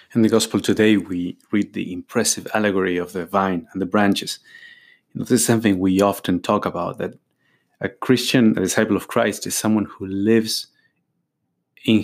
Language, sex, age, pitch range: English, male, 30-49, 95-115 Hz